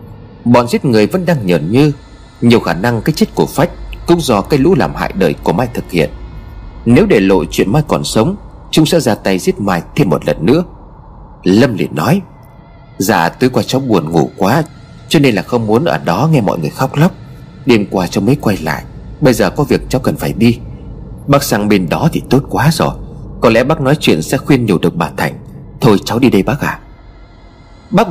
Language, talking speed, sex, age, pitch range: Vietnamese, 225 wpm, male, 30-49, 110-155 Hz